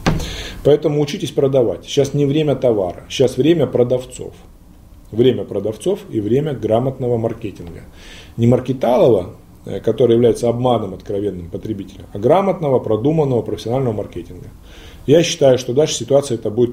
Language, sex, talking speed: Russian, male, 125 wpm